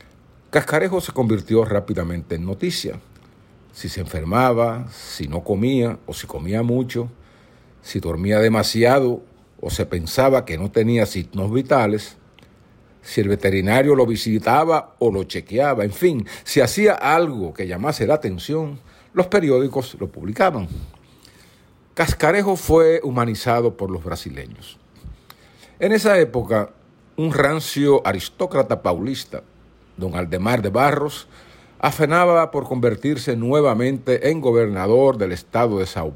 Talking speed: 125 wpm